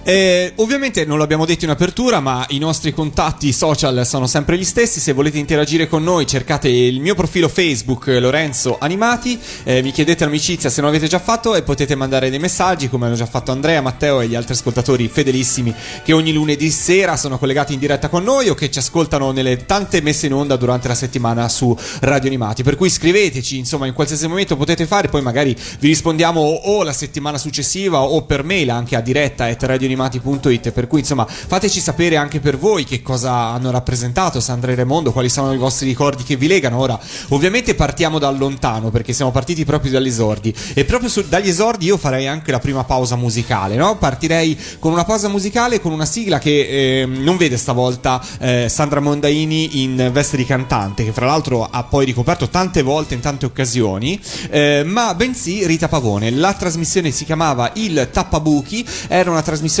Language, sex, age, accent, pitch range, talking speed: Italian, male, 30-49, native, 130-165 Hz, 200 wpm